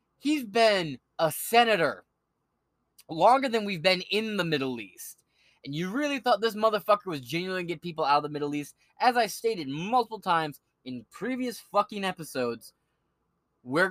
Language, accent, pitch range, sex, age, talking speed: English, American, 150-205 Hz, male, 20-39, 170 wpm